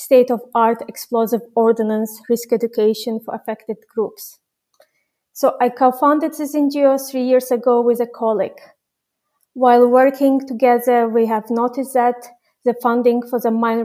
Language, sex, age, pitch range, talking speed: English, female, 30-49, 225-245 Hz, 135 wpm